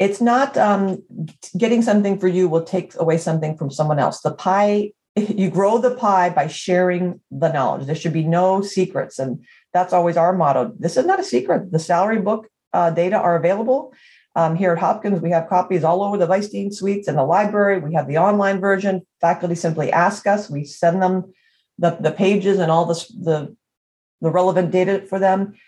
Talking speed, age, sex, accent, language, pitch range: 200 wpm, 40-59, female, American, English, 170-210 Hz